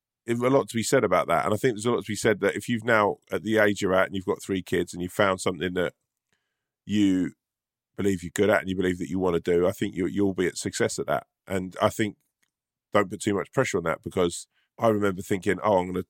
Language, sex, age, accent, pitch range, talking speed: English, male, 20-39, British, 90-110 Hz, 280 wpm